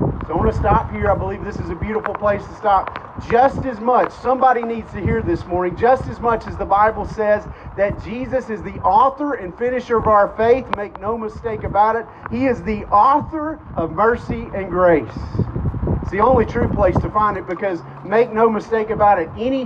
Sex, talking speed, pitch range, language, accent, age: male, 210 wpm, 175-225 Hz, English, American, 40-59